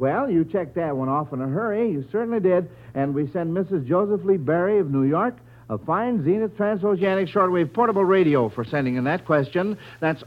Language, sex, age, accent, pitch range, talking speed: English, male, 60-79, American, 130-195 Hz, 205 wpm